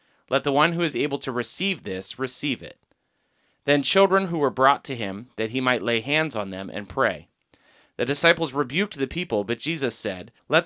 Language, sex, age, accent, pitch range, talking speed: English, male, 30-49, American, 115-155 Hz, 205 wpm